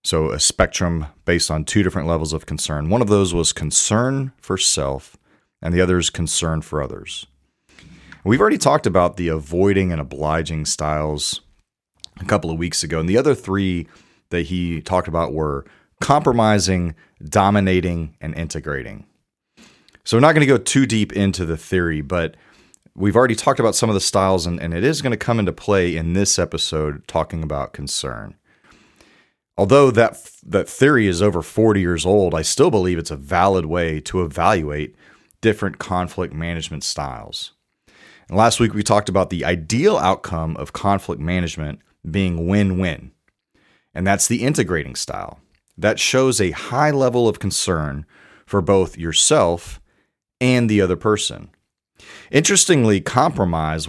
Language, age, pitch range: English, 30-49, 80-100 Hz